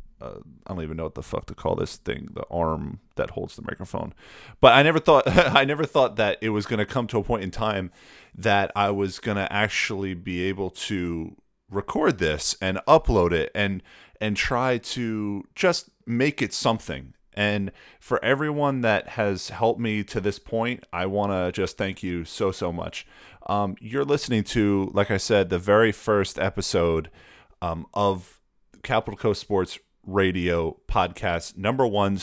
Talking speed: 175 wpm